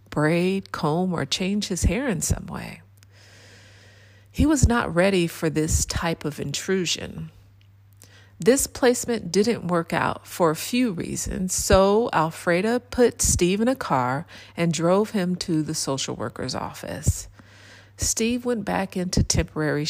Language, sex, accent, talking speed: English, female, American, 140 wpm